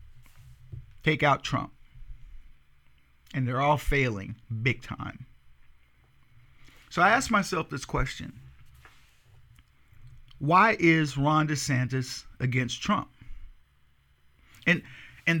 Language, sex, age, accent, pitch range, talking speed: English, male, 50-69, American, 120-165 Hz, 90 wpm